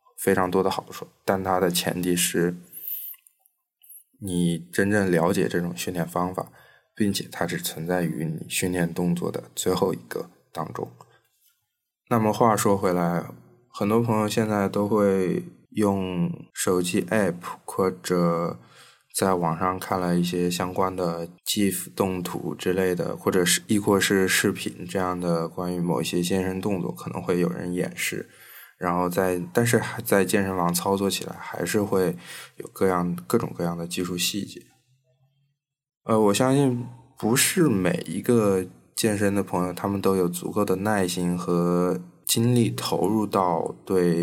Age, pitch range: 20-39, 90-105 Hz